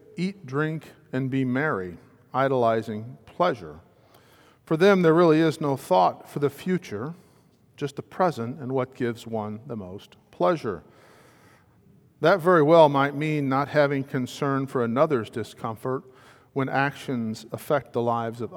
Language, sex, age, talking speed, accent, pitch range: English, male, 50-69, 140 wpm, American, 115-145 Hz